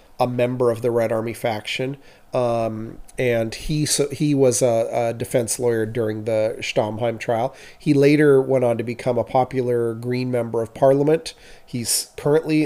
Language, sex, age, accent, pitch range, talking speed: English, male, 30-49, American, 115-135 Hz, 165 wpm